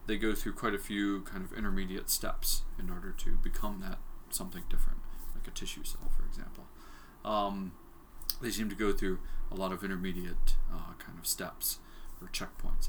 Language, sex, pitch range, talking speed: English, male, 90-105 Hz, 180 wpm